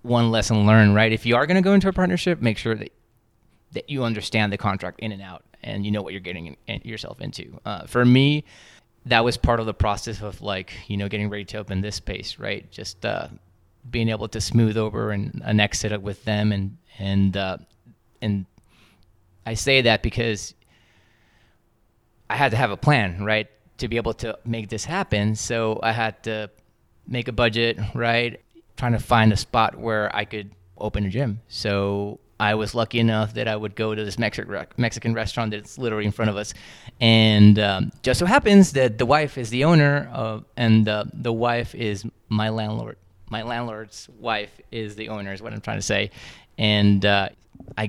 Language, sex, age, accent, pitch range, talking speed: English, male, 20-39, American, 105-120 Hz, 195 wpm